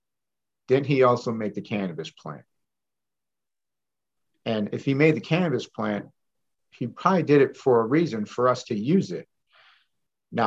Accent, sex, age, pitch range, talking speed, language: American, male, 50-69, 115-140 Hz, 155 wpm, English